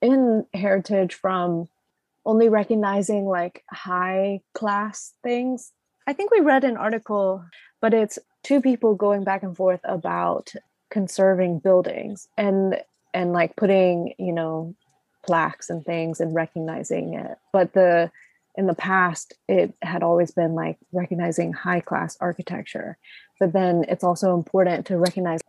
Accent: American